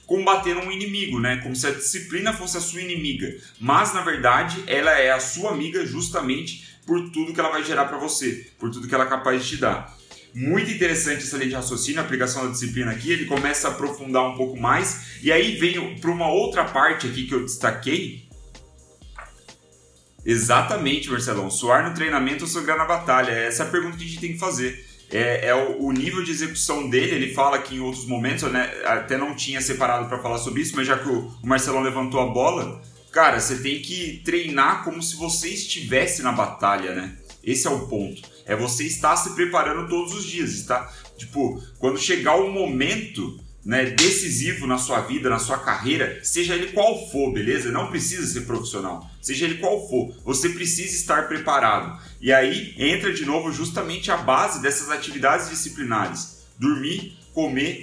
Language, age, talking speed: Portuguese, 30-49, 190 wpm